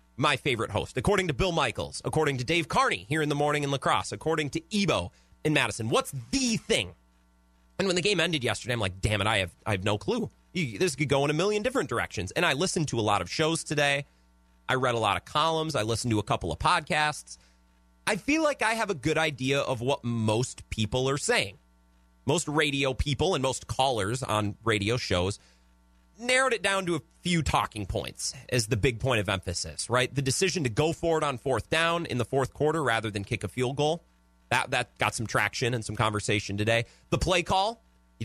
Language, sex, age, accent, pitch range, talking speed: English, male, 30-49, American, 105-160 Hz, 220 wpm